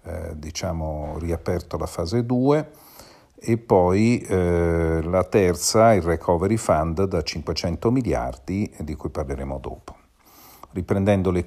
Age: 50-69